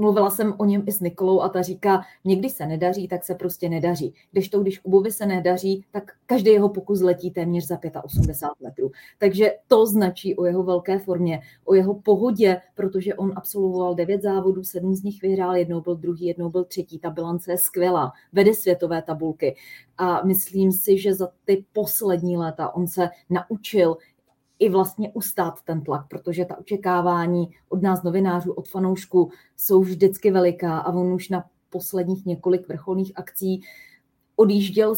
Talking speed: 170 wpm